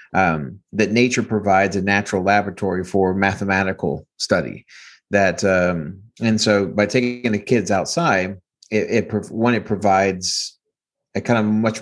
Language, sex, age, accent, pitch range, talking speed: English, male, 30-49, American, 95-110 Hz, 140 wpm